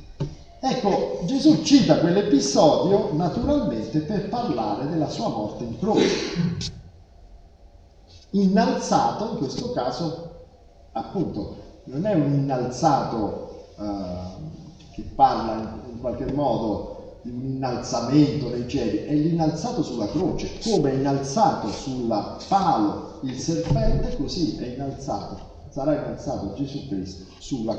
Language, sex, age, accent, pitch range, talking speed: Italian, male, 40-59, native, 110-165 Hz, 110 wpm